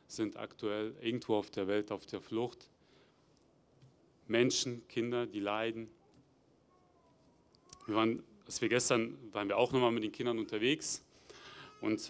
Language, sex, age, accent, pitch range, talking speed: German, male, 30-49, German, 105-125 Hz, 140 wpm